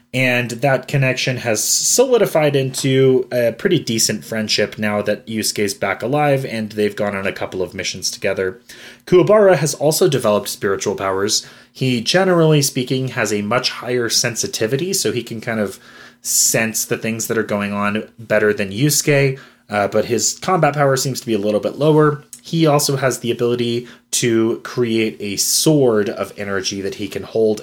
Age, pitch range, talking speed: 20-39, 105-135 Hz, 175 wpm